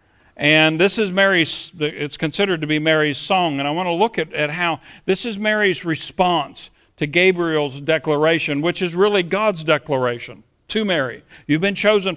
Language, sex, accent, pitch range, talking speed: English, male, American, 155-195 Hz, 175 wpm